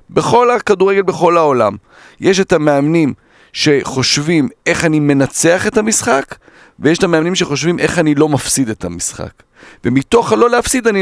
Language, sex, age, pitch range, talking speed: Hebrew, male, 40-59, 125-180 Hz, 145 wpm